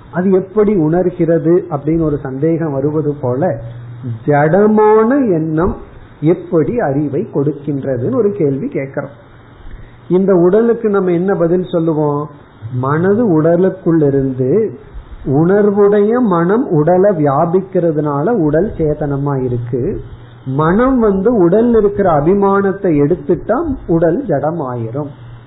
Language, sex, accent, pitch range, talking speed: Tamil, male, native, 135-185 Hz, 90 wpm